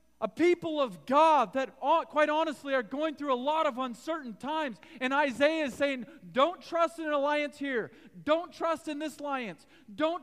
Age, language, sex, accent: 40-59, English, male, American